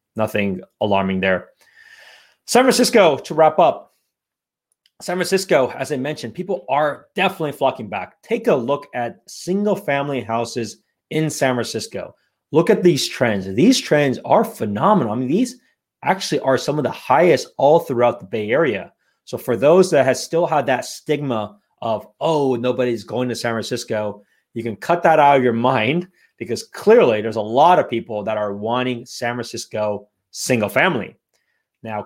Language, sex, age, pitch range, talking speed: English, male, 30-49, 110-155 Hz, 165 wpm